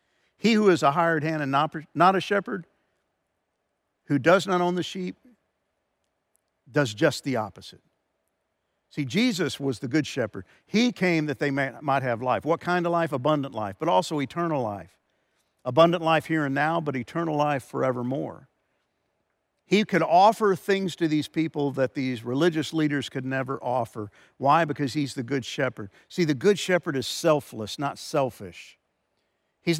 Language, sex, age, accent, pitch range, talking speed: English, male, 50-69, American, 130-175 Hz, 165 wpm